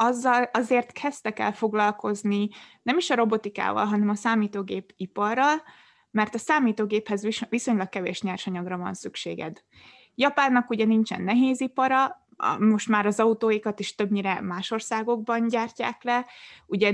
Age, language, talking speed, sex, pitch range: 20-39, Hungarian, 130 wpm, female, 205-245 Hz